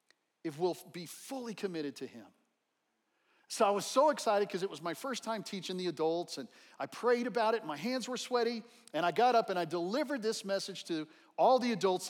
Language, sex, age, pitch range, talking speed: English, male, 40-59, 170-245 Hz, 220 wpm